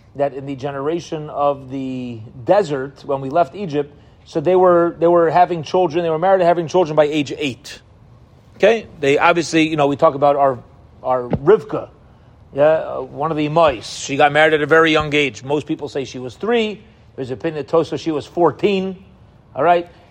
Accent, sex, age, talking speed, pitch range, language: American, male, 30-49, 195 wpm, 140-175 Hz, English